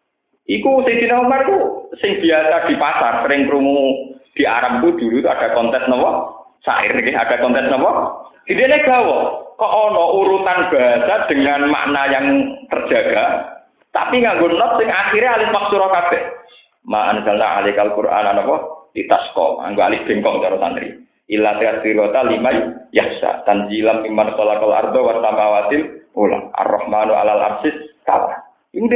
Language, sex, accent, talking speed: Indonesian, male, native, 110 wpm